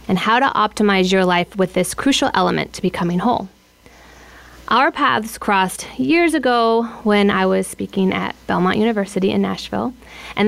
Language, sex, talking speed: English, female, 160 wpm